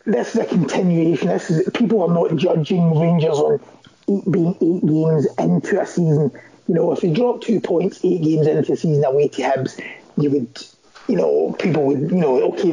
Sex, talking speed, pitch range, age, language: male, 205 wpm, 155-215 Hz, 30-49, English